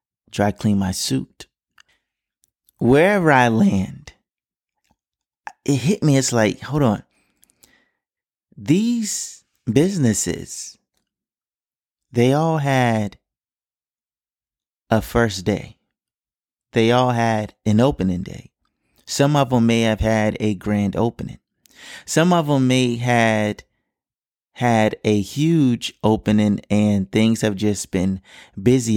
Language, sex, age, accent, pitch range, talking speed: English, male, 30-49, American, 105-135 Hz, 110 wpm